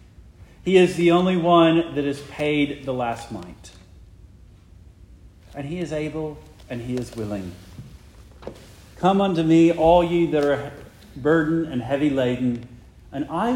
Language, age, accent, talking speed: English, 50-69, American, 140 wpm